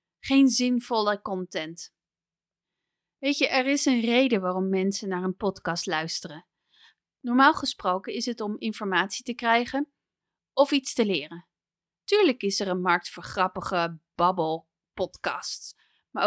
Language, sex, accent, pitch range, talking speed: English, female, Dutch, 195-270 Hz, 135 wpm